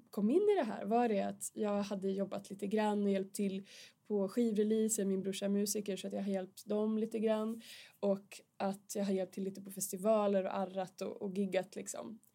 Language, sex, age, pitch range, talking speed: English, female, 20-39, 195-220 Hz, 210 wpm